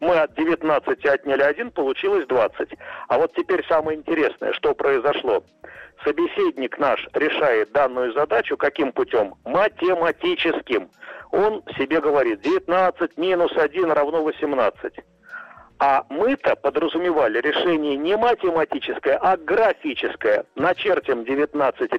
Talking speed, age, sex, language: 110 wpm, 50-69, male, Russian